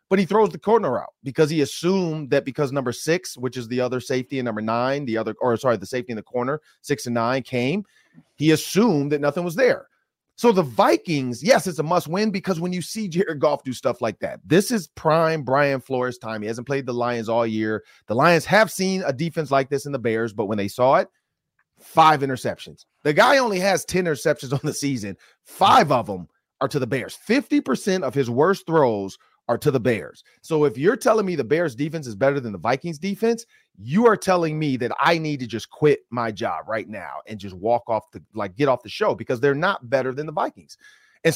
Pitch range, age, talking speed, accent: 125-180 Hz, 30-49, 235 wpm, American